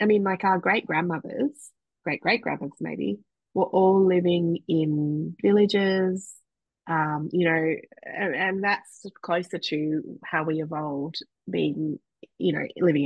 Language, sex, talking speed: English, female, 125 wpm